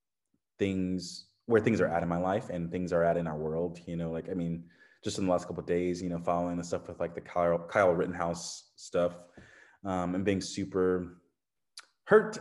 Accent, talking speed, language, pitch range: American, 215 wpm, English, 85-95 Hz